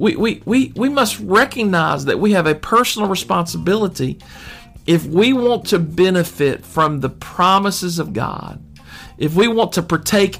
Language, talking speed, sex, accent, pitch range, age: English, 155 wpm, male, American, 120-170 Hz, 50-69